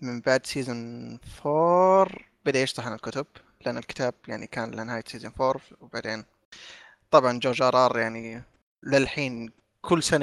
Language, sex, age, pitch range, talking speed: Arabic, male, 20-39, 125-155 Hz, 135 wpm